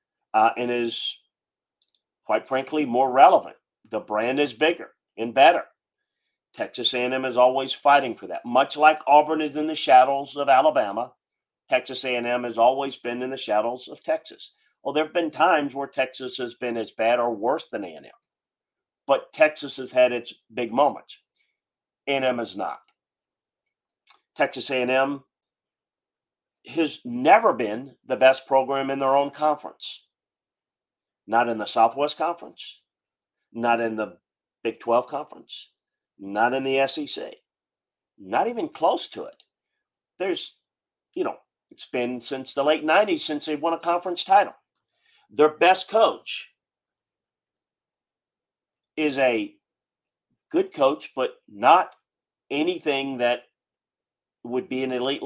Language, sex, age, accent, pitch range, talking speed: English, male, 40-59, American, 125-155 Hz, 140 wpm